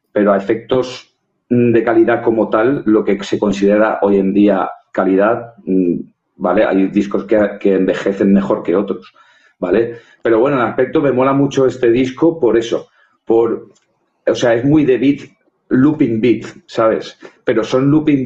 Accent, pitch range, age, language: Spanish, 110-140 Hz, 40-59, Spanish